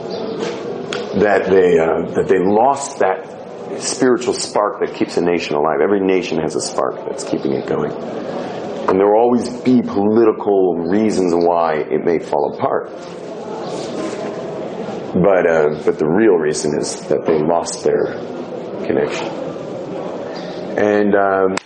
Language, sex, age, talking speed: English, male, 40-59, 135 wpm